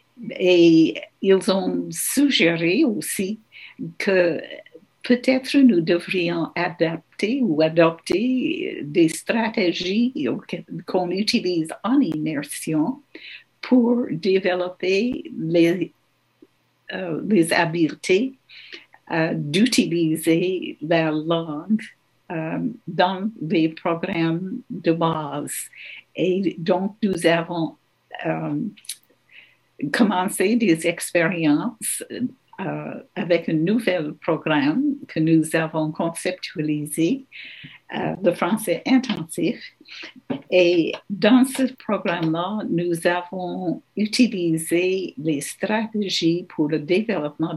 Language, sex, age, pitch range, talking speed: English, female, 60-79, 165-225 Hz, 85 wpm